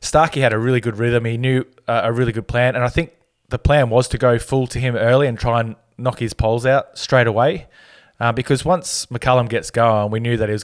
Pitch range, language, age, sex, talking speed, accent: 105-125 Hz, English, 20-39, male, 250 wpm, Australian